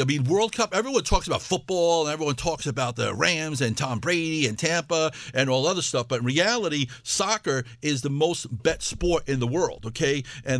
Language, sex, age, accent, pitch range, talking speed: English, male, 50-69, American, 125-165 Hz, 210 wpm